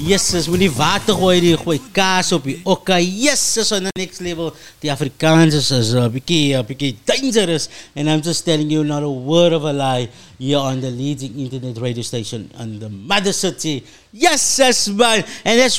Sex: male